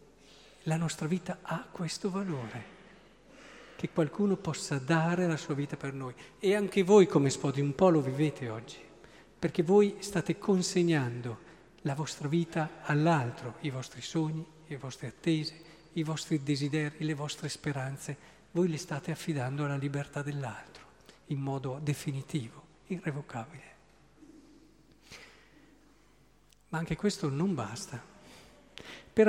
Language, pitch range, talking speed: Italian, 150-200 Hz, 125 wpm